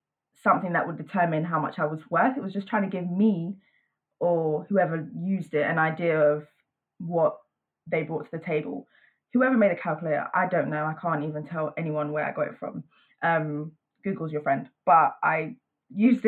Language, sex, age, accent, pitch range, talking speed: English, female, 20-39, British, 160-200 Hz, 195 wpm